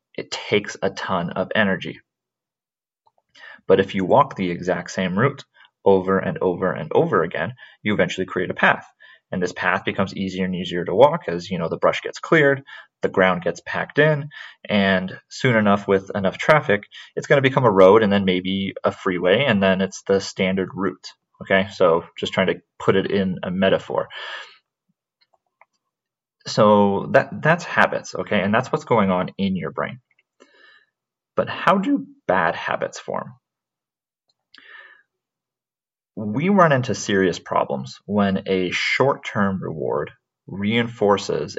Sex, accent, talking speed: male, American, 155 wpm